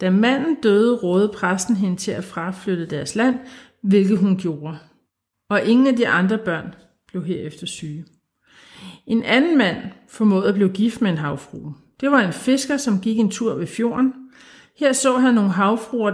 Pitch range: 190-240 Hz